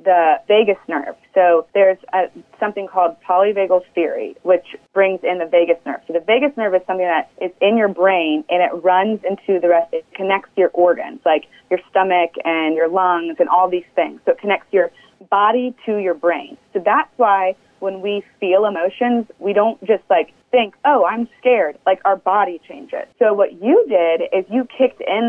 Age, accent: 30-49, American